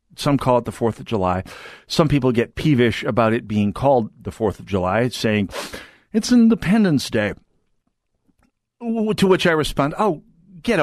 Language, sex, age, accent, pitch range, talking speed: English, male, 50-69, American, 130-190 Hz, 160 wpm